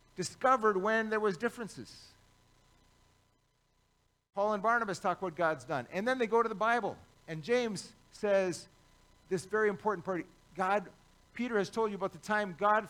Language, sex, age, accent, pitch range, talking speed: English, male, 50-69, American, 145-215 Hz, 165 wpm